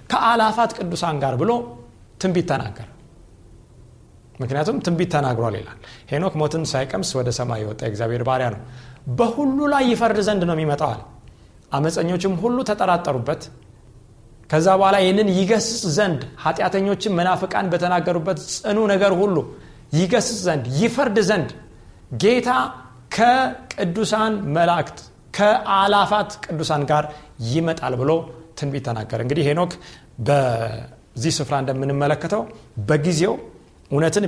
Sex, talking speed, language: male, 105 wpm, Amharic